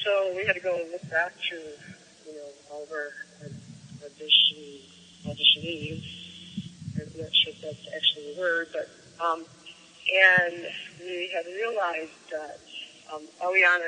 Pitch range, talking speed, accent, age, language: 150-175 Hz, 135 wpm, American, 30-49, English